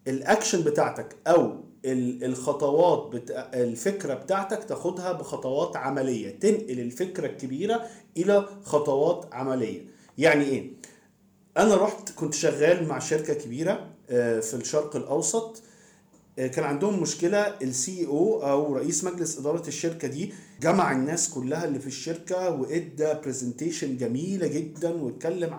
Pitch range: 140-185 Hz